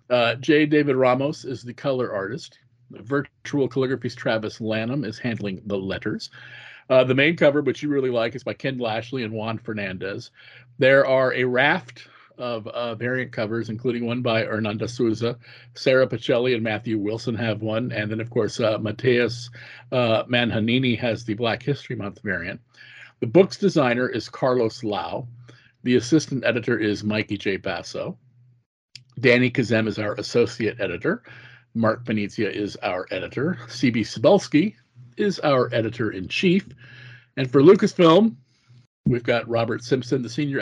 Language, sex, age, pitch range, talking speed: English, male, 50-69, 115-135 Hz, 150 wpm